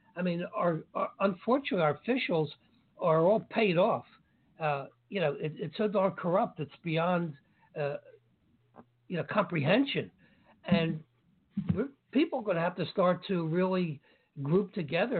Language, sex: English, male